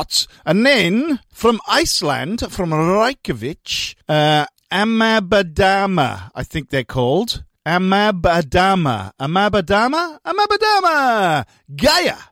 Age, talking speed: 50-69, 80 wpm